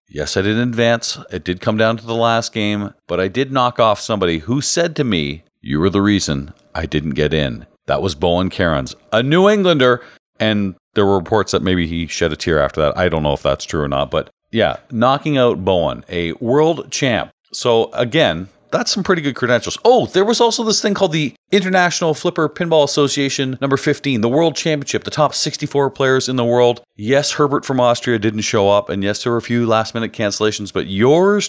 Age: 40-59